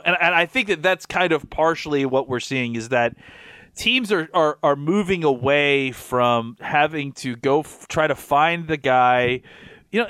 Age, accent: 30-49, American